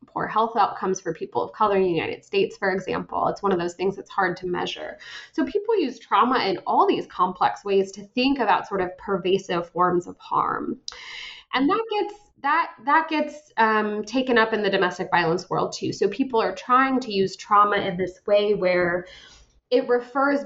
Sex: female